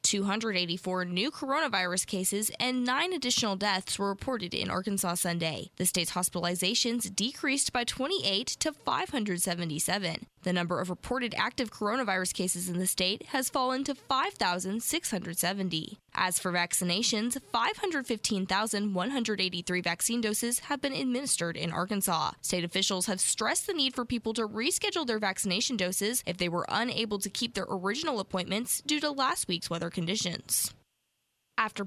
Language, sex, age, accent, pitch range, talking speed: English, female, 10-29, American, 185-250 Hz, 140 wpm